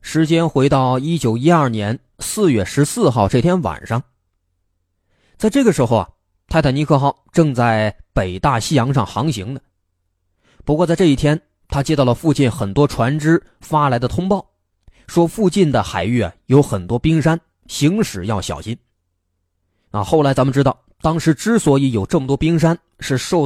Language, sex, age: Chinese, male, 20-39